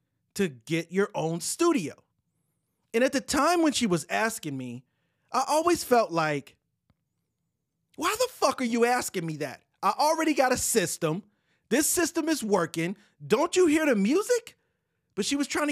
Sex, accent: male, American